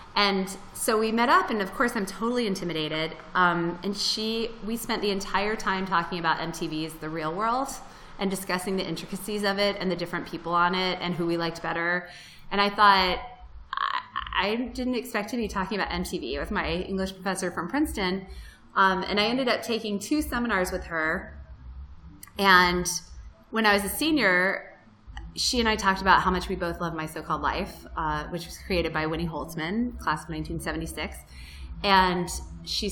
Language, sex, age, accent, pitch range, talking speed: English, female, 20-39, American, 170-210 Hz, 185 wpm